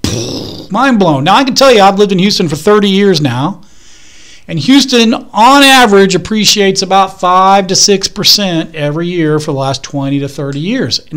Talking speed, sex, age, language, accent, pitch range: 185 wpm, male, 40-59, English, American, 180-245 Hz